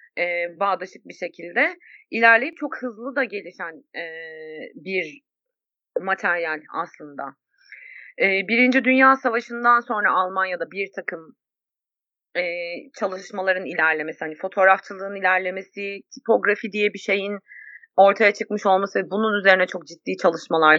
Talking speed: 105 wpm